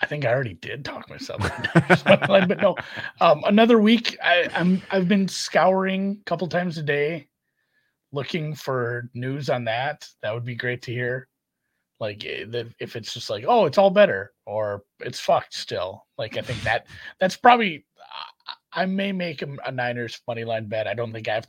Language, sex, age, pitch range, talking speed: English, male, 30-49, 110-160 Hz, 185 wpm